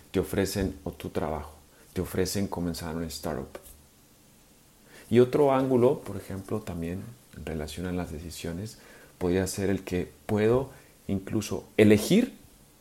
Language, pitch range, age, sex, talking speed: Spanish, 80-95 Hz, 40-59, male, 120 wpm